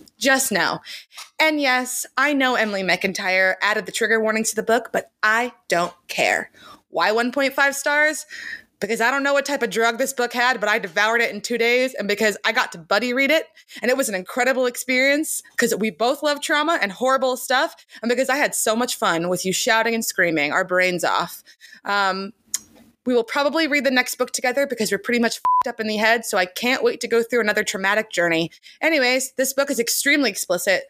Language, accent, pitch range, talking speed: English, American, 195-265 Hz, 215 wpm